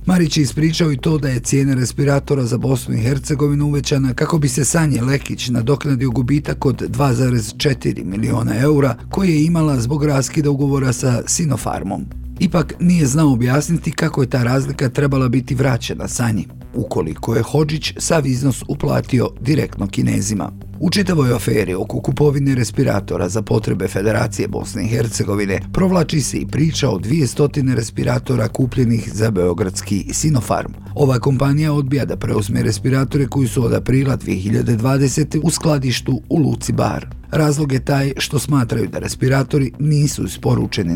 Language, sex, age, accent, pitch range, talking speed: Croatian, male, 50-69, native, 115-145 Hz, 150 wpm